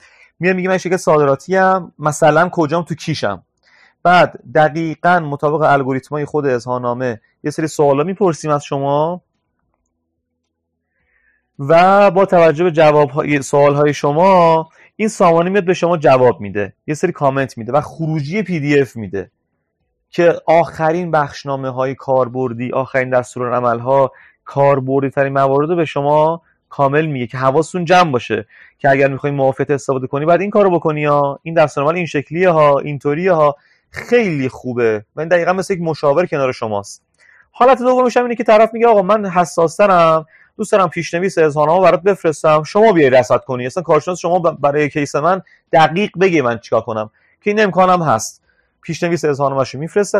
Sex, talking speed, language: male, 160 wpm, Persian